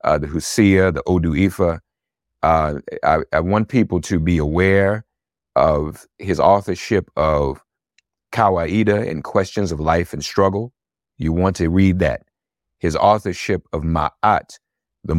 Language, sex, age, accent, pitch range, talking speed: English, male, 50-69, American, 80-95 Hz, 140 wpm